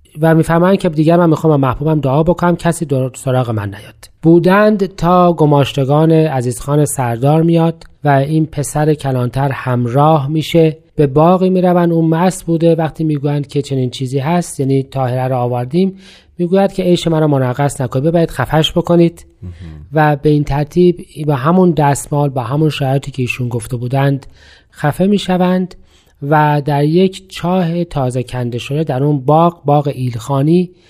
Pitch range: 130-165 Hz